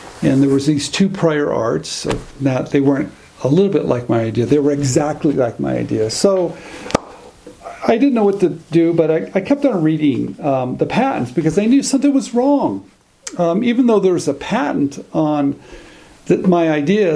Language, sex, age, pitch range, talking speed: English, male, 50-69, 140-185 Hz, 190 wpm